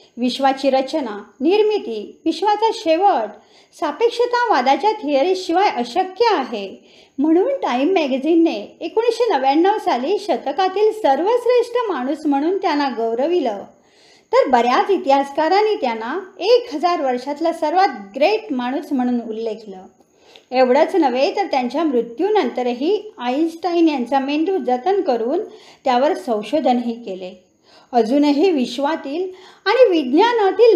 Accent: native